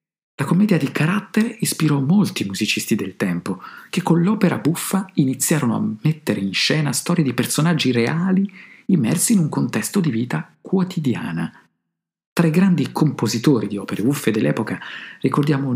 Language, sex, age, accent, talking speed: Italian, male, 50-69, native, 145 wpm